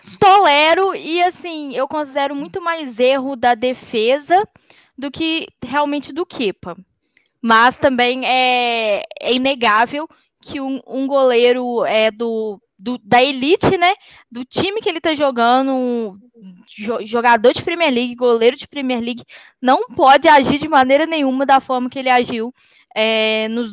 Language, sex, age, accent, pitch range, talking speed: Portuguese, female, 10-29, Brazilian, 230-285 Hz, 145 wpm